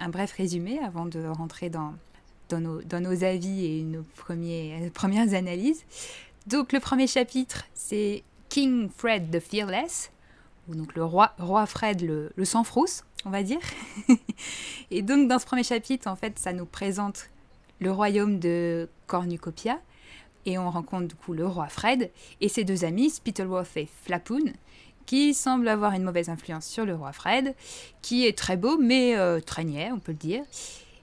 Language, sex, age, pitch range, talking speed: French, female, 20-39, 175-245 Hz, 175 wpm